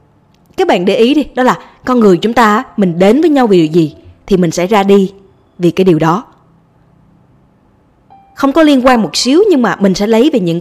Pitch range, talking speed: 170-230 Hz, 225 wpm